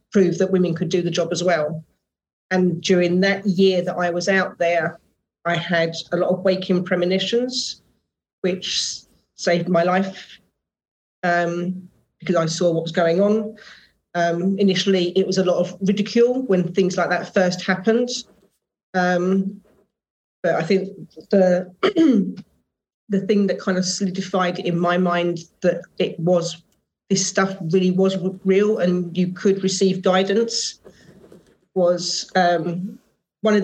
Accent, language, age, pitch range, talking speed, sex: British, English, 40-59, 175-195 Hz, 145 wpm, female